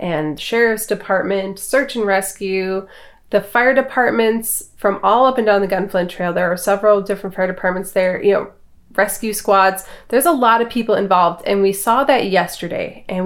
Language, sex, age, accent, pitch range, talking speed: English, female, 30-49, American, 185-225 Hz, 180 wpm